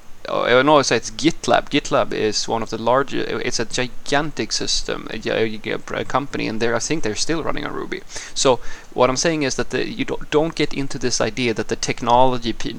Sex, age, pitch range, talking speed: male, 30-49, 110-130 Hz, 215 wpm